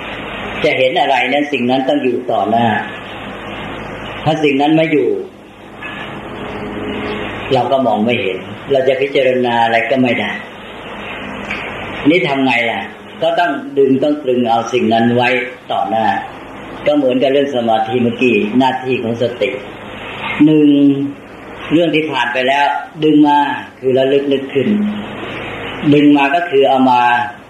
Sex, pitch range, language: female, 115-140 Hz, English